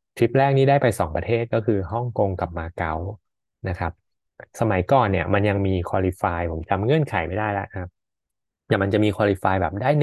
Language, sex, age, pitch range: Thai, male, 20-39, 90-115 Hz